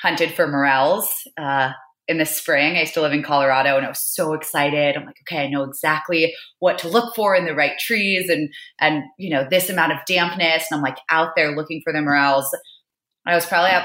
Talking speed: 230 wpm